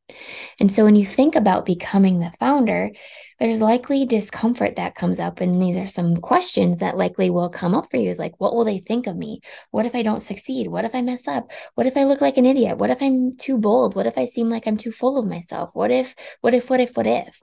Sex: female